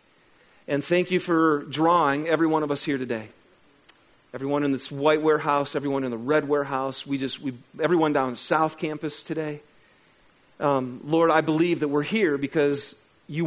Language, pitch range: English, 125-155 Hz